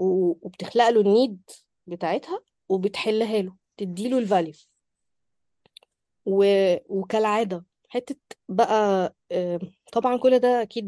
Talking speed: 95 wpm